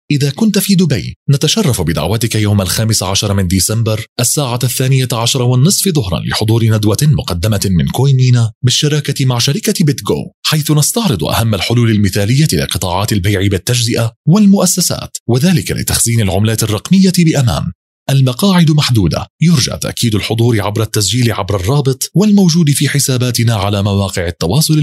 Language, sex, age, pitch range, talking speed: Arabic, male, 30-49, 110-150 Hz, 130 wpm